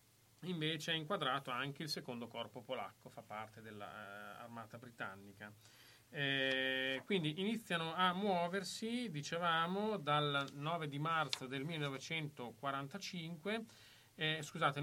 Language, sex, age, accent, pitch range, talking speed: Italian, male, 30-49, native, 120-160 Hz, 105 wpm